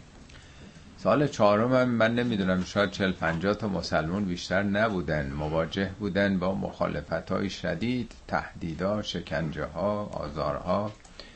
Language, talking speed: Persian, 105 wpm